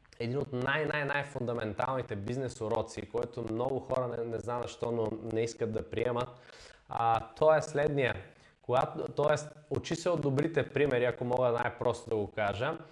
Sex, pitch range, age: male, 115-145 Hz, 20-39